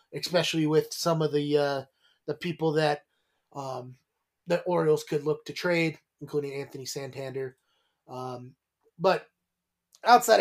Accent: American